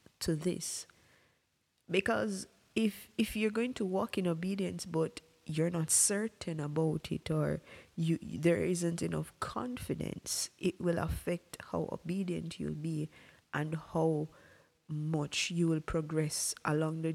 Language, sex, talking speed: English, female, 135 wpm